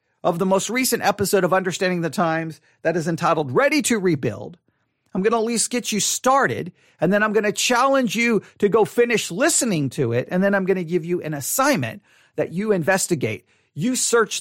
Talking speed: 210 wpm